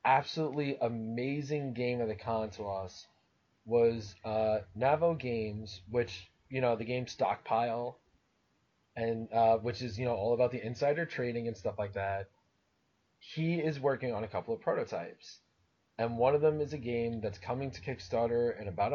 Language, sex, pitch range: English, male, 115-140 Hz